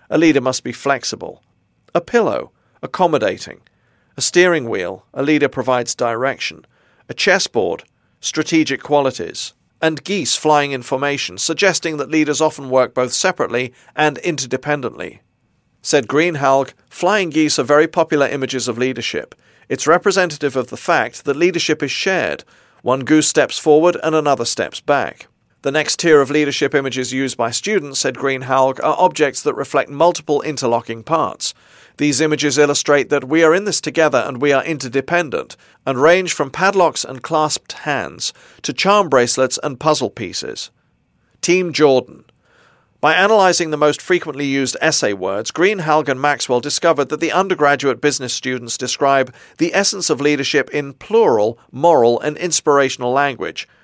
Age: 40-59